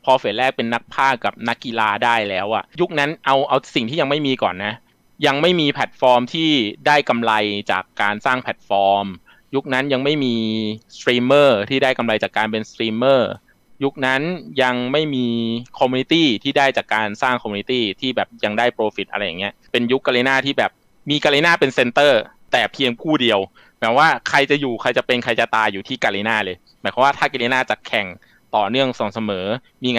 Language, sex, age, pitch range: Thai, male, 20-39, 110-135 Hz